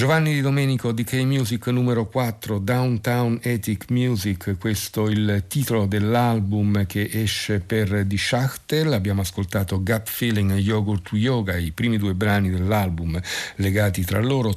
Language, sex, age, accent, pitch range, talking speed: Italian, male, 50-69, native, 100-120 Hz, 145 wpm